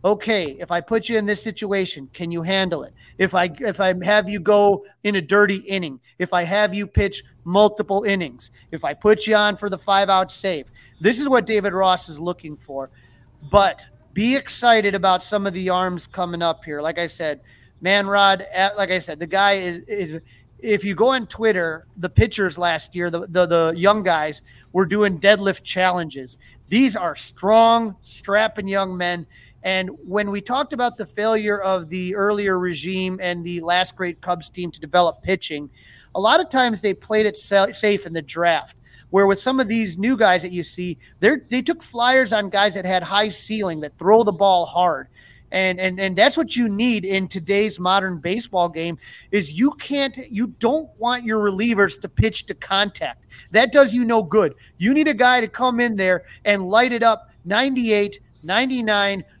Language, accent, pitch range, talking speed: English, American, 175-215 Hz, 195 wpm